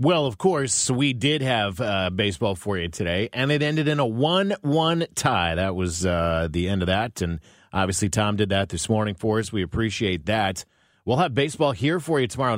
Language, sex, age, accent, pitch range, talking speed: English, male, 40-59, American, 95-125 Hz, 210 wpm